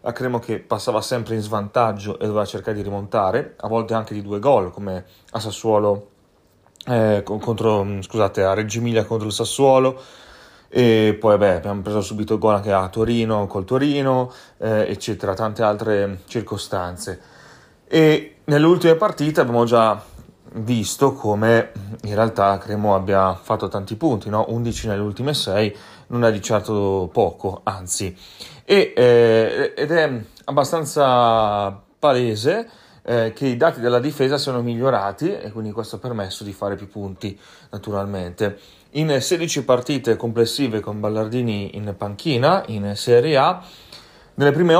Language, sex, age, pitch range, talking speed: Italian, male, 30-49, 100-125 Hz, 145 wpm